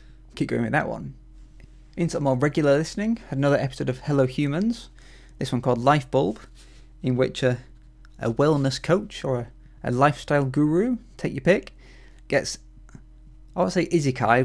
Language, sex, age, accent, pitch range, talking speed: English, male, 20-39, British, 120-145 Hz, 160 wpm